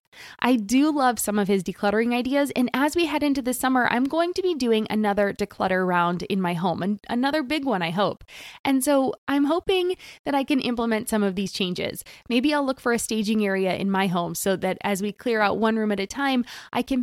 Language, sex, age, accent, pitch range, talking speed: English, female, 20-39, American, 200-275 Hz, 235 wpm